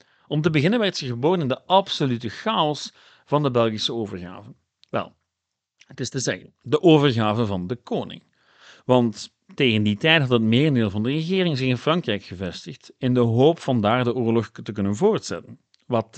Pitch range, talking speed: 110-160 Hz, 180 wpm